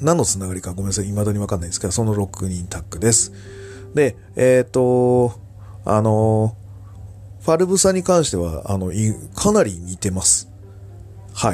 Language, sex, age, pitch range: Japanese, male, 40-59, 95-115 Hz